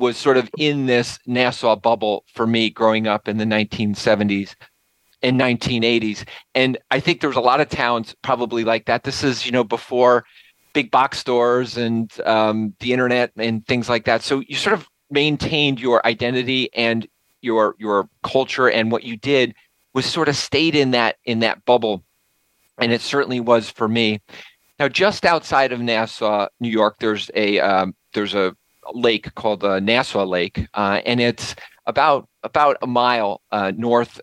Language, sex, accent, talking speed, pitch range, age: English, male, American, 175 wpm, 110-130 Hz, 40-59